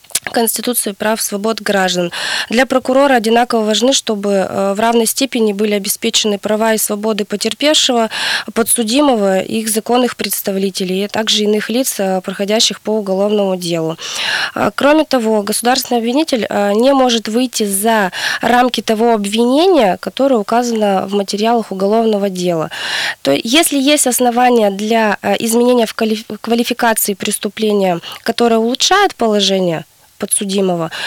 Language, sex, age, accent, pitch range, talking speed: Russian, female, 20-39, native, 200-240 Hz, 120 wpm